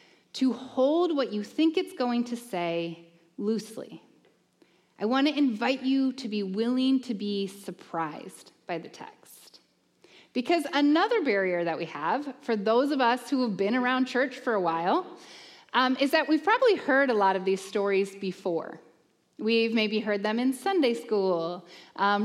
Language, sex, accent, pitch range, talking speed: English, female, American, 205-310 Hz, 165 wpm